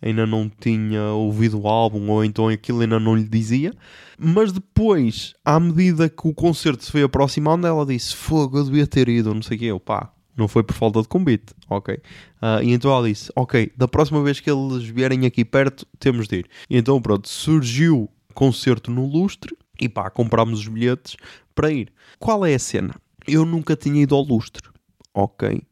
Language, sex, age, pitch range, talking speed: Portuguese, male, 20-39, 110-155 Hz, 200 wpm